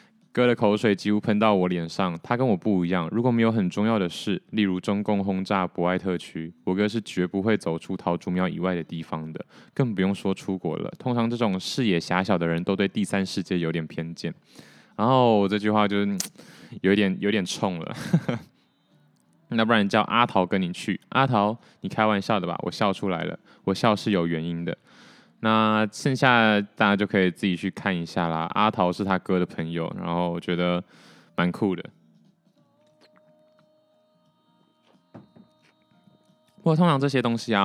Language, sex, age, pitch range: Chinese, male, 20-39, 90-115 Hz